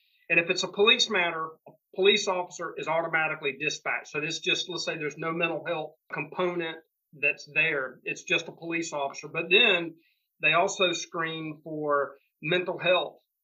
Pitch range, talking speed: 155-190 Hz, 165 wpm